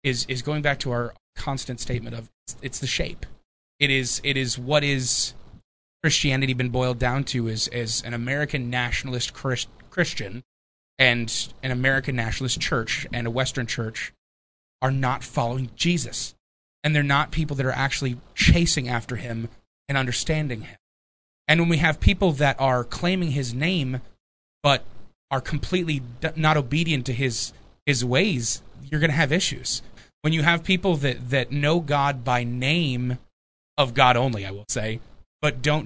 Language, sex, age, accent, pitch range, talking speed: English, male, 20-39, American, 120-150 Hz, 165 wpm